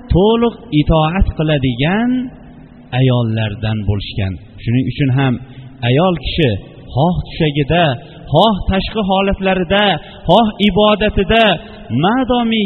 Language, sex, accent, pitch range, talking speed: Russian, male, Turkish, 140-210 Hz, 85 wpm